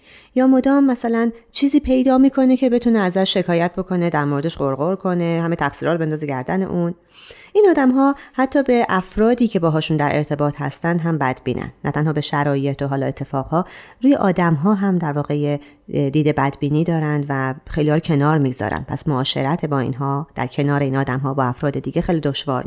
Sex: female